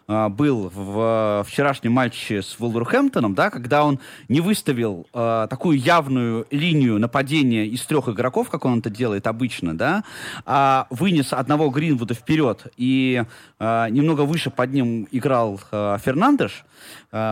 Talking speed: 140 wpm